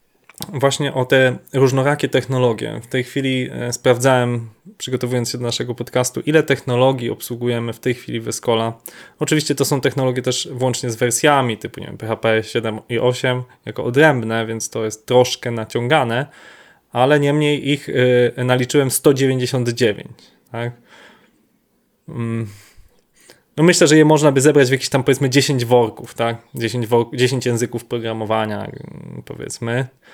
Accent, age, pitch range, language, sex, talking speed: native, 20-39, 115-135 Hz, Polish, male, 140 wpm